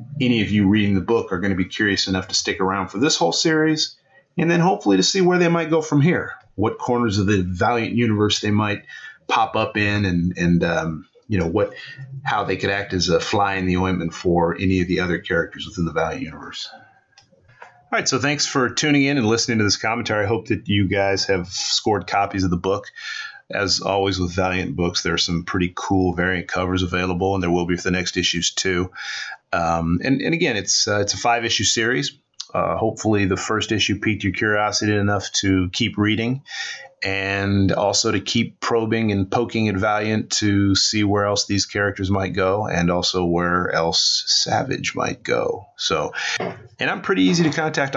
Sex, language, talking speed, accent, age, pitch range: male, English, 210 wpm, American, 30-49, 95-115 Hz